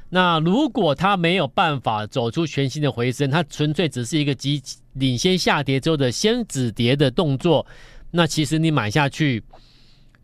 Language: Chinese